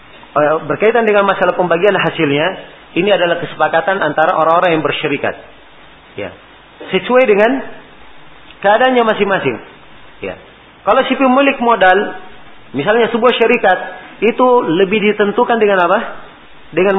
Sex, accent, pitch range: male, native, 160-220 Hz